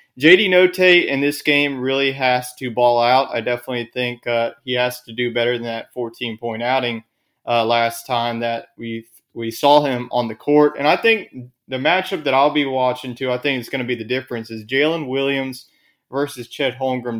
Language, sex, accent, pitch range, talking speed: English, male, American, 120-145 Hz, 200 wpm